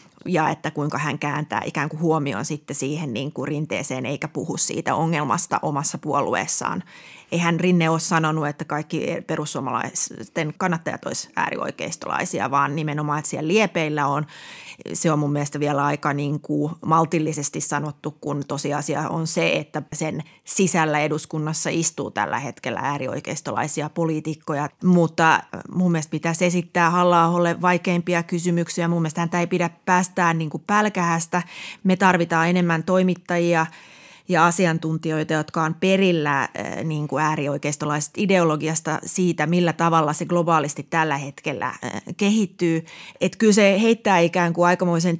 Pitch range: 150-175 Hz